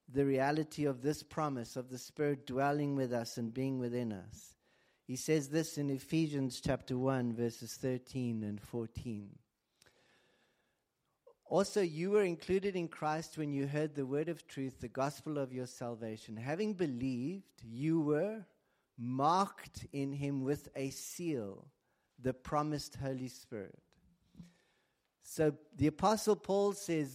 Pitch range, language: 130-175 Hz, English